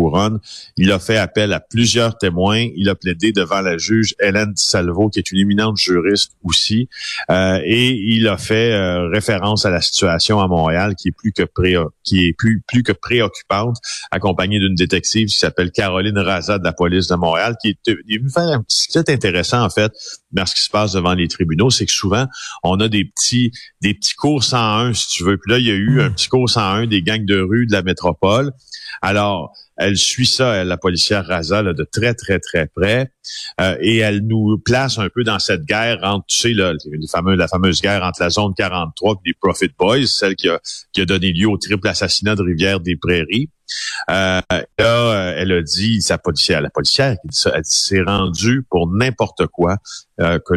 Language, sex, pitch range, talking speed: French, male, 90-110 Hz, 210 wpm